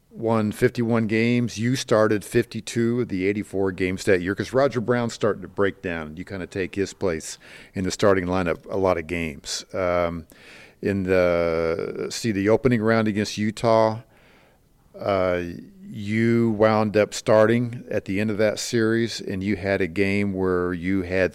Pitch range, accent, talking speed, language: 90-110 Hz, American, 170 wpm, English